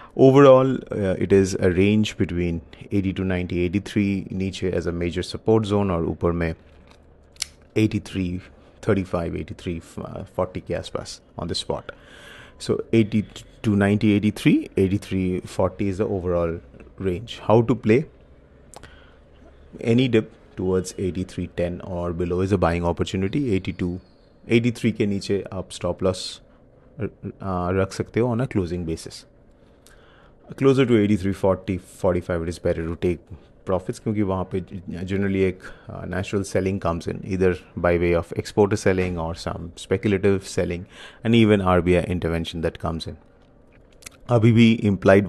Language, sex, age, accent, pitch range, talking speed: English, male, 30-49, Indian, 90-105 Hz, 145 wpm